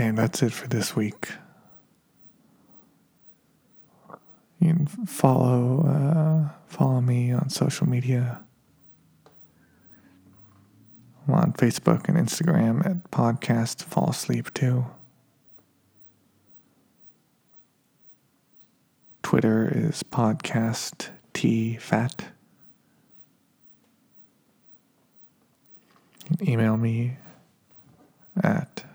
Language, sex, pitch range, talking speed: English, male, 115-155 Hz, 70 wpm